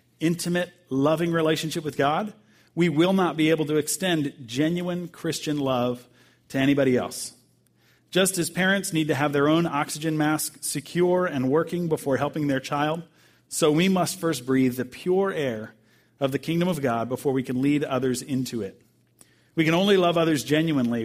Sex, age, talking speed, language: male, 40-59, 175 wpm, English